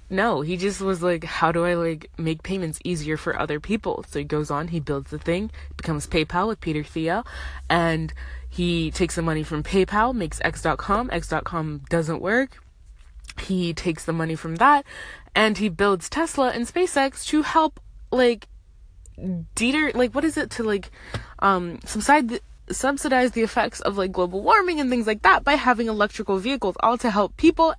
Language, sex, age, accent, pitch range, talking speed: English, female, 20-39, American, 160-235 Hz, 180 wpm